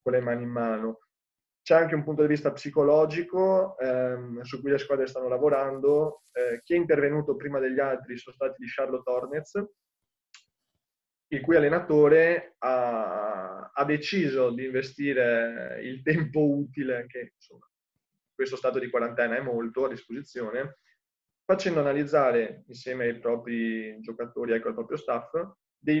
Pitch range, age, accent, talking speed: 120-145 Hz, 20-39, native, 145 wpm